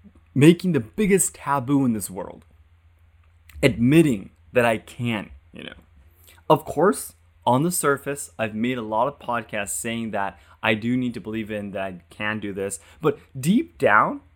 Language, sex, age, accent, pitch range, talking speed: English, male, 20-39, American, 90-135 Hz, 165 wpm